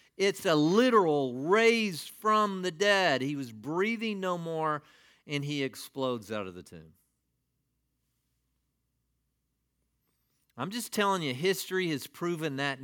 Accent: American